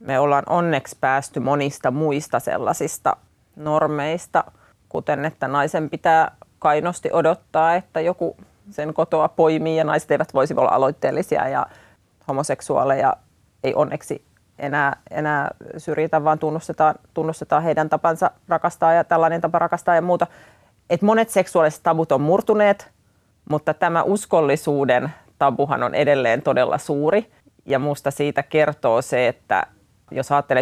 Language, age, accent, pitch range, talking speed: Finnish, 30-49, native, 135-165 Hz, 130 wpm